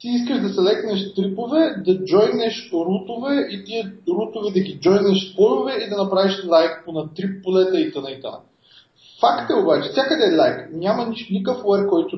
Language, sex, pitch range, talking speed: Bulgarian, male, 180-230 Hz, 165 wpm